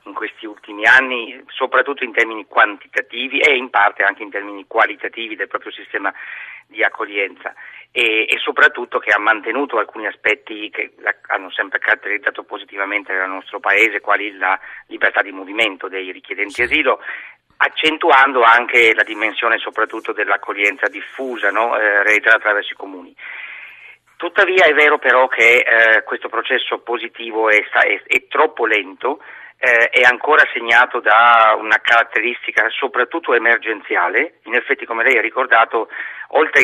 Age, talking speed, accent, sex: 50-69, 140 wpm, native, male